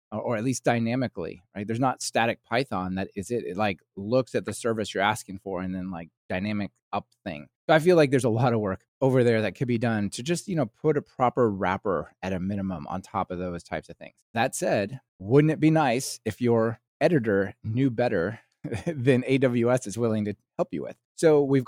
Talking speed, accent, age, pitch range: 225 wpm, American, 30-49, 105-135 Hz